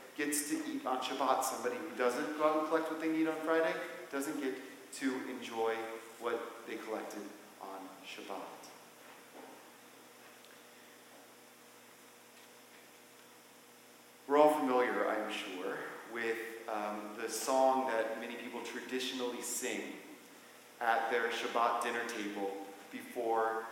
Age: 40-59